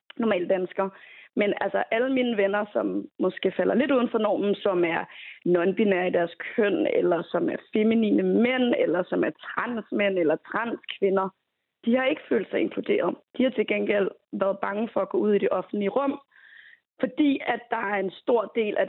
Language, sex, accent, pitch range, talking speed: Danish, female, native, 190-250 Hz, 185 wpm